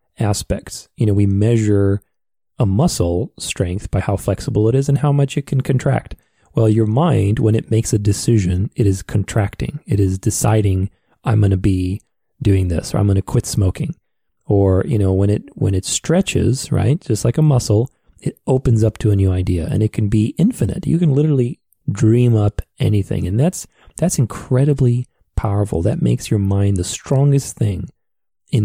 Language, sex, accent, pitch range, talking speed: English, male, American, 100-125 Hz, 185 wpm